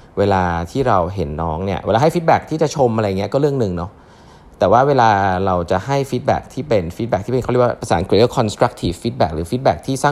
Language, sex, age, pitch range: Thai, male, 20-39, 90-130 Hz